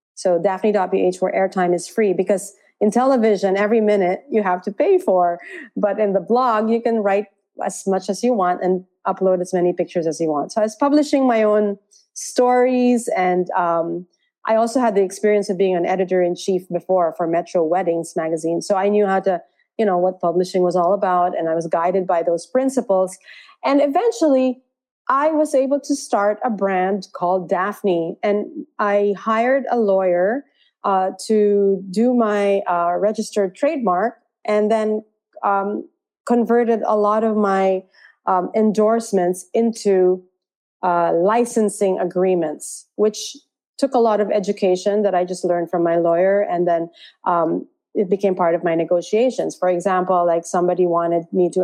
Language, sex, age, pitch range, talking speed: English, female, 30-49, 180-220 Hz, 165 wpm